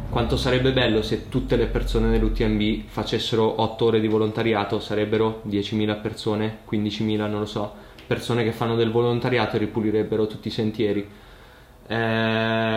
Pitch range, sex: 110-125 Hz, male